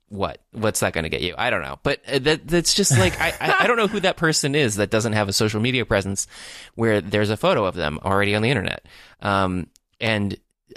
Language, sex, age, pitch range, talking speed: English, male, 20-39, 100-120 Hz, 235 wpm